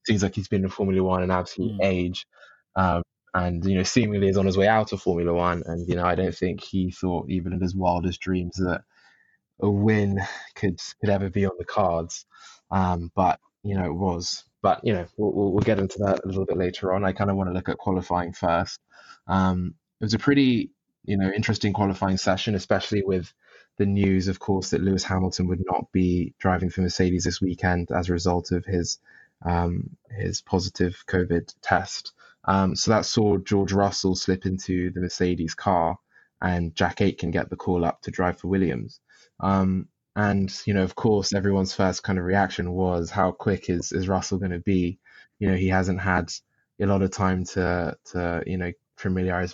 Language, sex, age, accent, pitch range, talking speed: English, male, 20-39, British, 90-100 Hz, 200 wpm